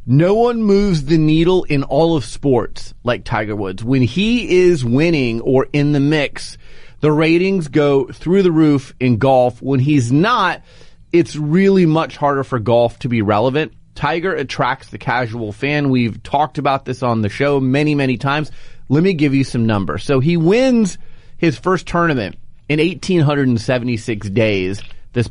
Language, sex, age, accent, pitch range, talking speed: English, male, 30-49, American, 120-165 Hz, 170 wpm